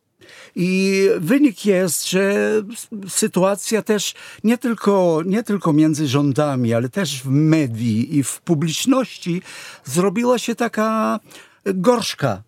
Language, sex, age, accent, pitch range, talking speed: Polish, male, 60-79, native, 150-195 Hz, 105 wpm